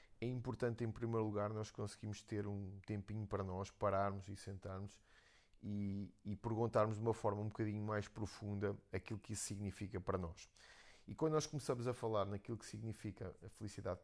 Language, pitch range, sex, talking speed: Portuguese, 100-110 Hz, male, 180 wpm